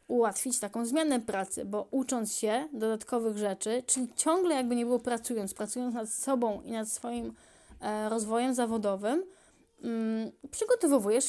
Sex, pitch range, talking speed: female, 215-265 Hz, 130 wpm